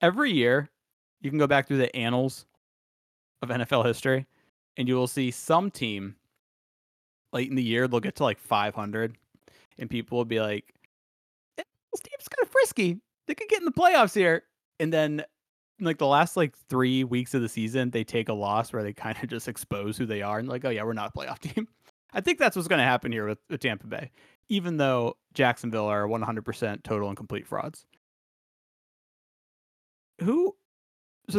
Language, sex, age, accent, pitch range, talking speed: English, male, 30-49, American, 115-155 Hz, 190 wpm